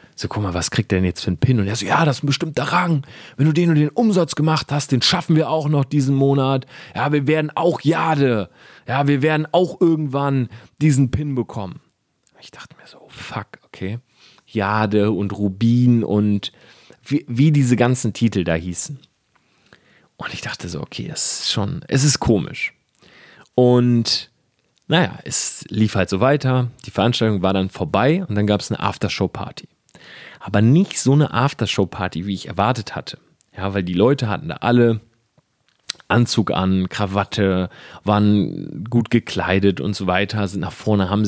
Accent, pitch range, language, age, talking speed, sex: German, 105-135 Hz, German, 30-49, 175 wpm, male